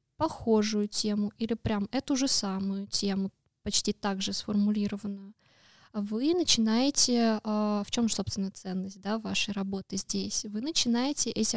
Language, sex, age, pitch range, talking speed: Russian, female, 20-39, 210-230 Hz, 135 wpm